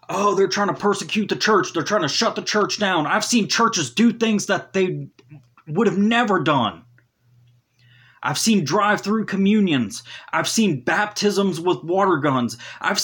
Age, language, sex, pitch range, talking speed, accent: 30-49, English, male, 120-195 Hz, 165 wpm, American